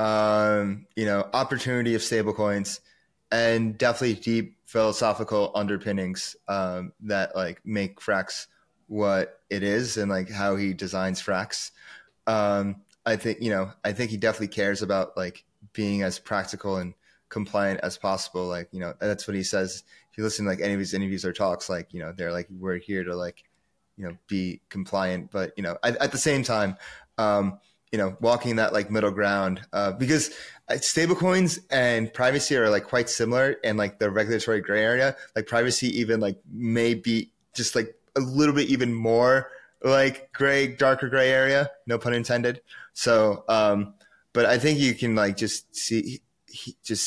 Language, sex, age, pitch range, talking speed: English, male, 20-39, 100-120 Hz, 175 wpm